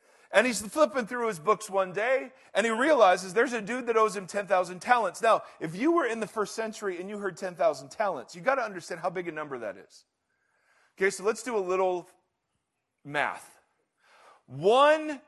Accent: American